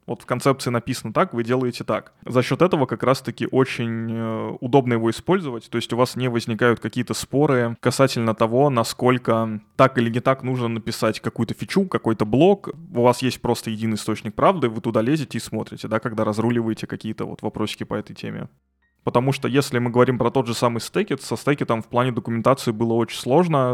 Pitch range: 115-130 Hz